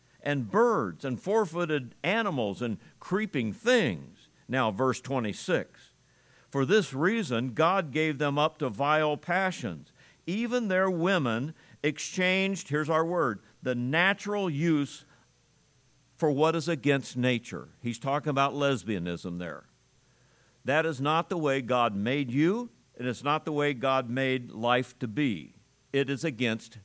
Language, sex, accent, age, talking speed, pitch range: English, male, American, 50-69, 140 wpm, 130-175 Hz